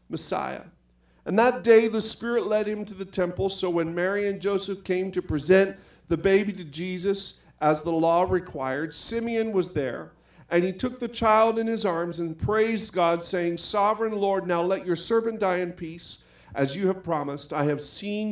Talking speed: 190 wpm